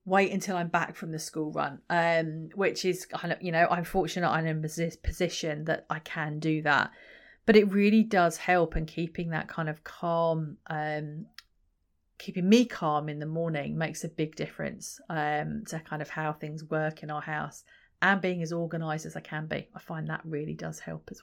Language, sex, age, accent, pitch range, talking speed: English, female, 30-49, British, 155-185 Hz, 205 wpm